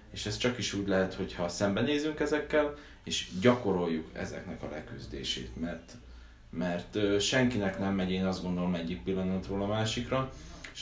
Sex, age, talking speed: male, 20-39, 150 wpm